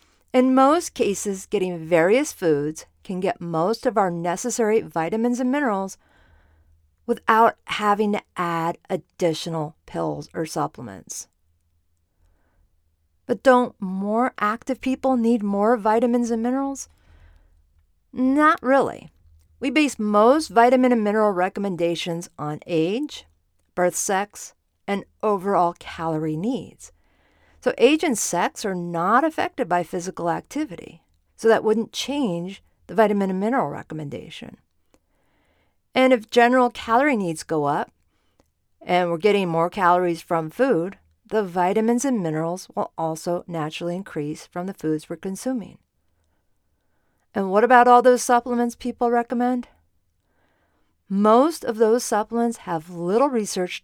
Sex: female